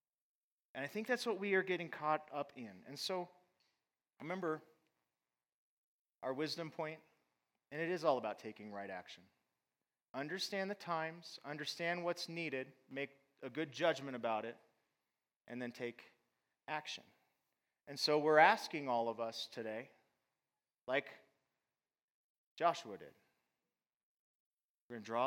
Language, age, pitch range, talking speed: English, 30-49, 100-155 Hz, 135 wpm